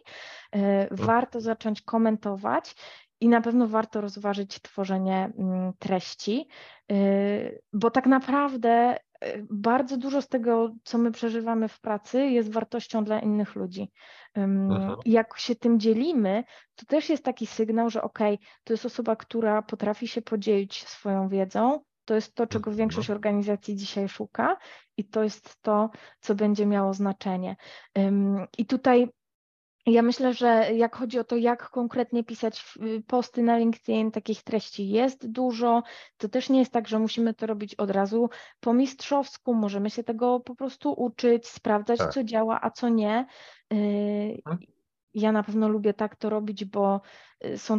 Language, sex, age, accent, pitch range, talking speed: Polish, female, 20-39, native, 200-235 Hz, 145 wpm